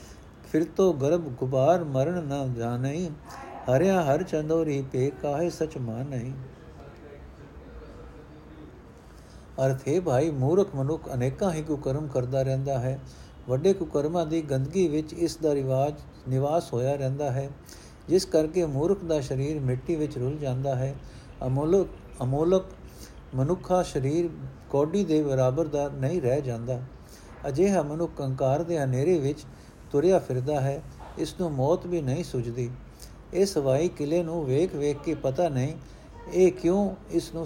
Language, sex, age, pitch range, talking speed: Punjabi, male, 60-79, 135-170 Hz, 105 wpm